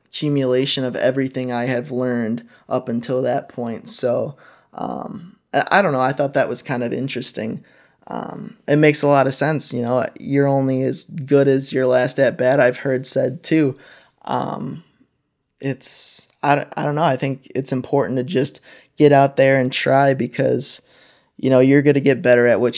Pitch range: 130-140 Hz